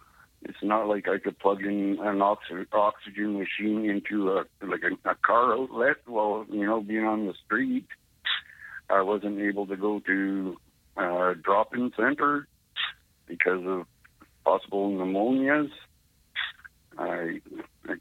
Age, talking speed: 60-79, 135 wpm